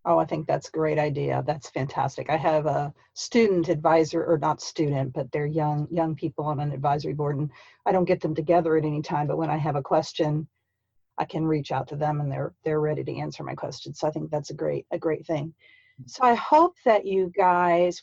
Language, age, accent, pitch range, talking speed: English, 40-59, American, 155-180 Hz, 235 wpm